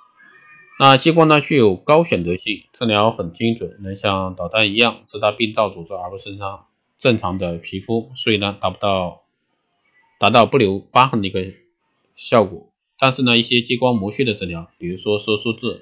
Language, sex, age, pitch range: Chinese, male, 20-39, 95-110 Hz